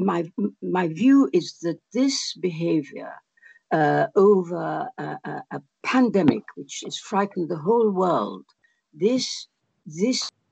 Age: 60-79